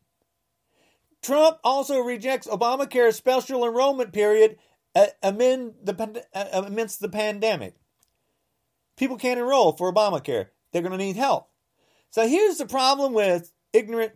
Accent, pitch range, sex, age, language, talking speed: American, 180-255 Hz, male, 40-59, English, 110 wpm